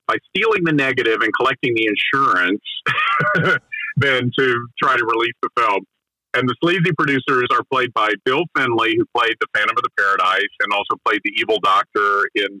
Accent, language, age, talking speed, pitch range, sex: American, English, 40-59, 180 wpm, 105-170 Hz, male